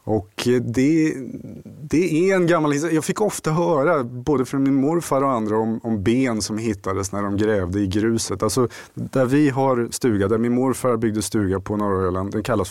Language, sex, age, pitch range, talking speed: Swedish, male, 30-49, 100-125 Hz, 200 wpm